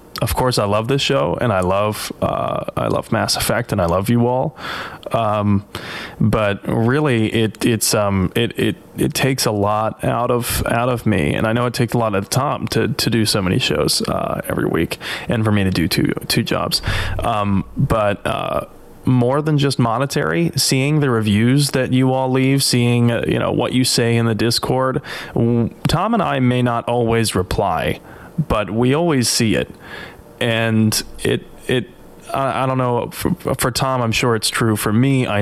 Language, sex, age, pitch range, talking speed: English, male, 20-39, 110-130 Hz, 195 wpm